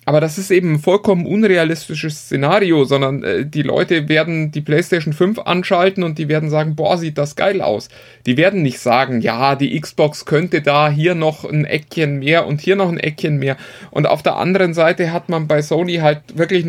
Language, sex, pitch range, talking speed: German, male, 145-180 Hz, 205 wpm